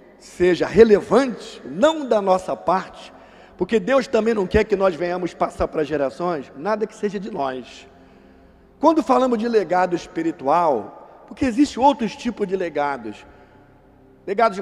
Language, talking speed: Portuguese, 140 wpm